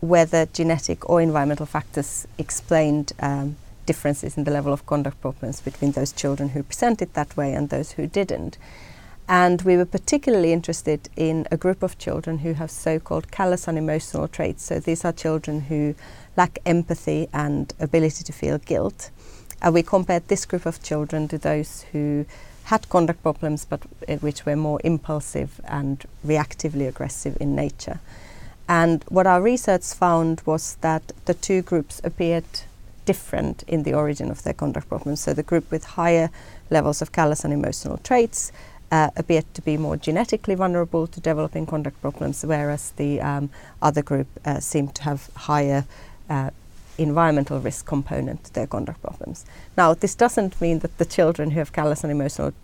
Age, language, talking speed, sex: 30-49, English, 170 wpm, female